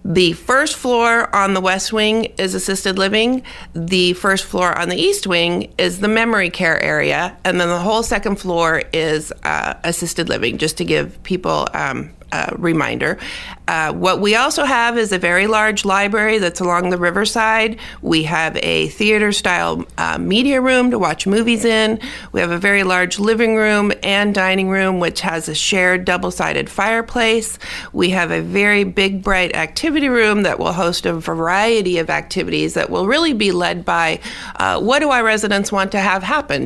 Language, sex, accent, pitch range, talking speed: English, female, American, 175-215 Hz, 180 wpm